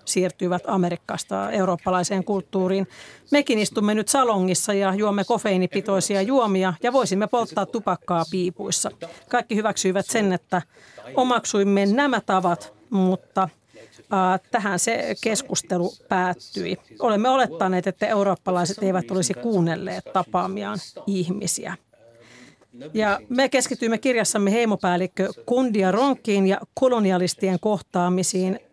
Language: Finnish